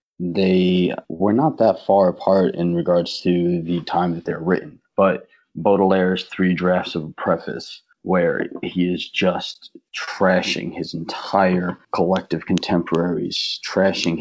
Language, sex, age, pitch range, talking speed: English, male, 30-49, 85-90 Hz, 130 wpm